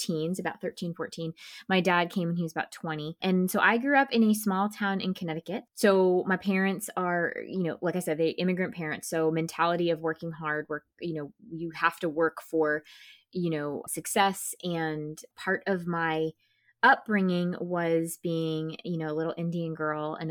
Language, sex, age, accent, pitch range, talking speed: English, female, 20-39, American, 160-185 Hz, 190 wpm